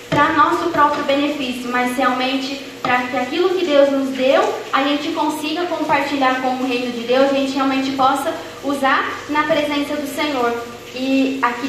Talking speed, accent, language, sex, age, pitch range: 170 wpm, Brazilian, Portuguese, female, 10-29, 250-300 Hz